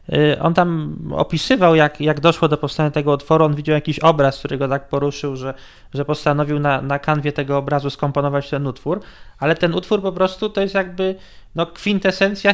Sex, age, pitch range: male, 20-39, 140-160 Hz